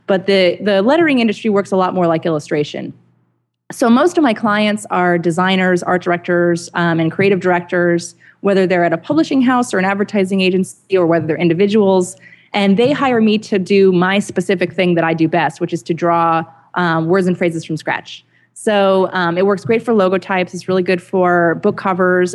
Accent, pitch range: American, 170-200 Hz